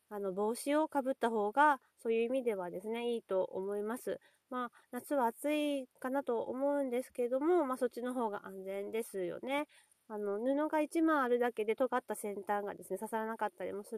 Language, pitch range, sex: Japanese, 200-275 Hz, female